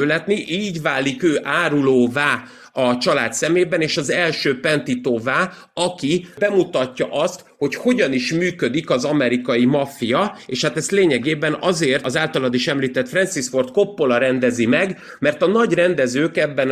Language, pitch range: Hungarian, 130-165 Hz